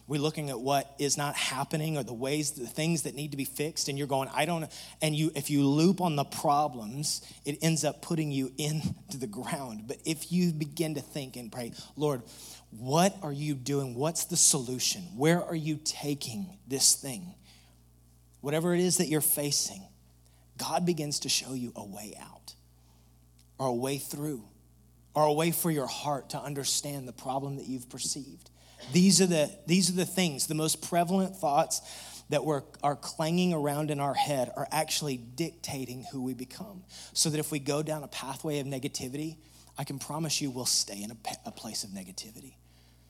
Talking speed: 190 wpm